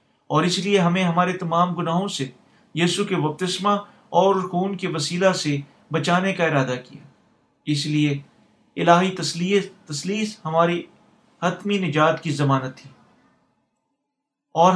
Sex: male